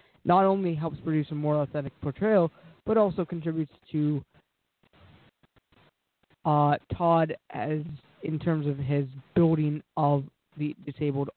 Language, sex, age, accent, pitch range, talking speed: English, male, 20-39, American, 150-170 Hz, 120 wpm